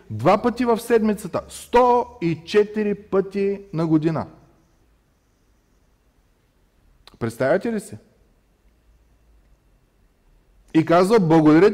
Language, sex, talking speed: Bulgarian, male, 70 wpm